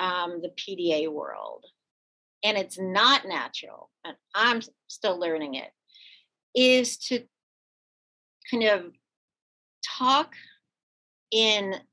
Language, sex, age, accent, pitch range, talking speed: English, female, 40-59, American, 190-260 Hz, 95 wpm